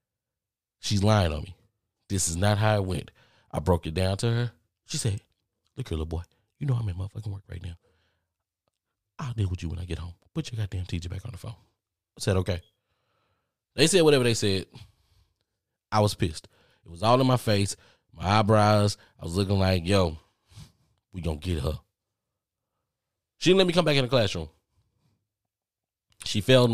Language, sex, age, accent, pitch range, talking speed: English, male, 20-39, American, 95-120 Hz, 190 wpm